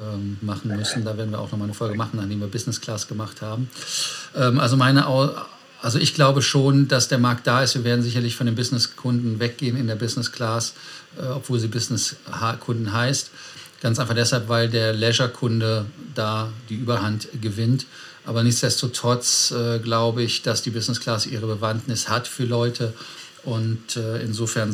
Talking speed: 170 wpm